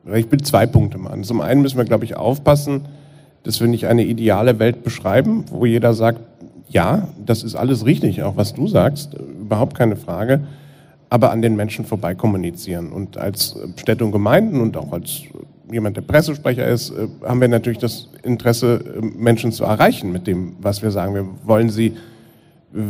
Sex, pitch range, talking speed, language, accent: male, 115-140 Hz, 180 wpm, German, German